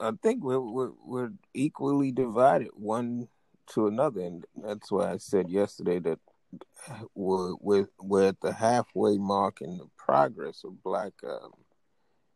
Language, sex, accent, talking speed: English, male, American, 145 wpm